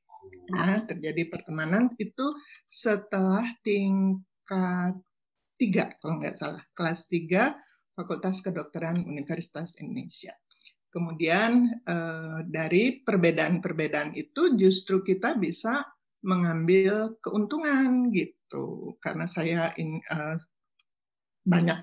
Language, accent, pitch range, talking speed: Indonesian, native, 170-225 Hz, 80 wpm